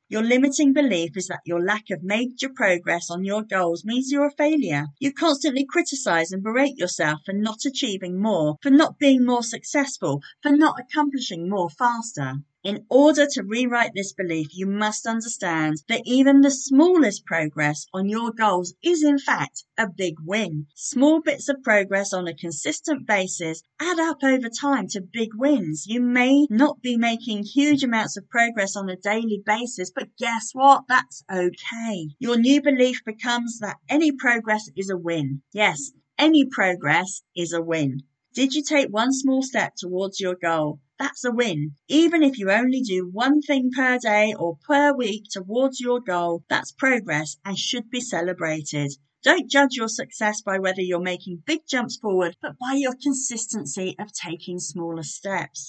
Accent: British